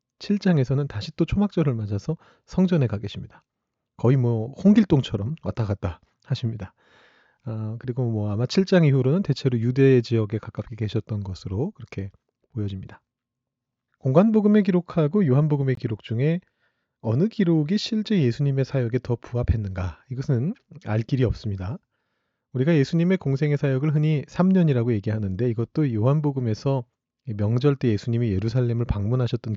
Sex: male